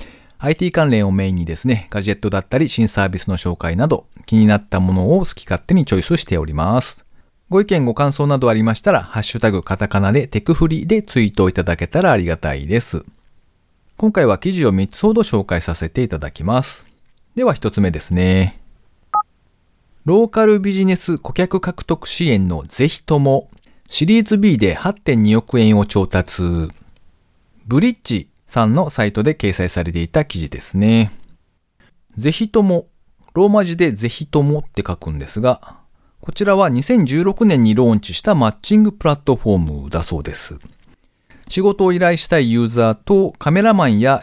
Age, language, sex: 40-59, Japanese, male